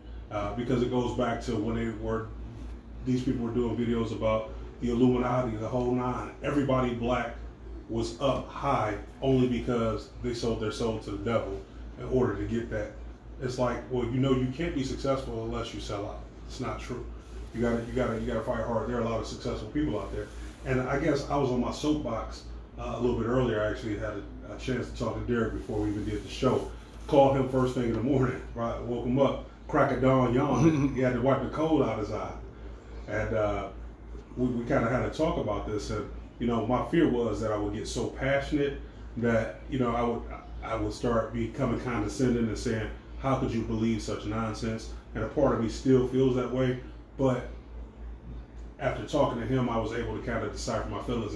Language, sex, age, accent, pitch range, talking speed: English, male, 30-49, American, 110-130 Hz, 220 wpm